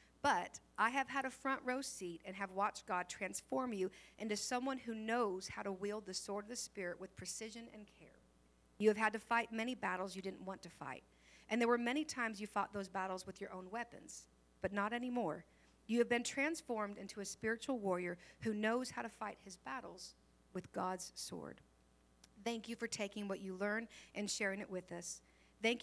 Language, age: English, 50-69